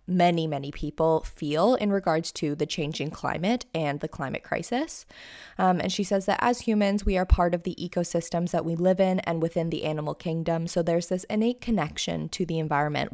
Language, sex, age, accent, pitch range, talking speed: English, female, 20-39, American, 160-195 Hz, 200 wpm